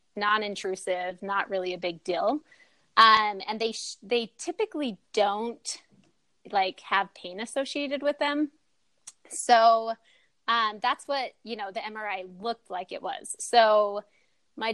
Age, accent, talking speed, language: 30-49, American, 135 wpm, English